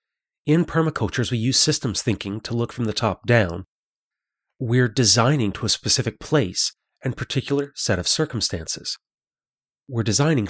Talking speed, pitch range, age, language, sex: 145 wpm, 105-135 Hz, 30-49, English, male